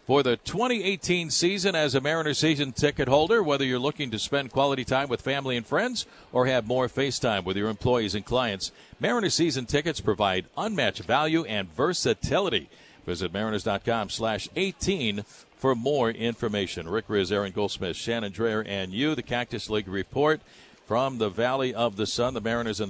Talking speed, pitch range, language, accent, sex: 175 wpm, 110-145 Hz, English, American, male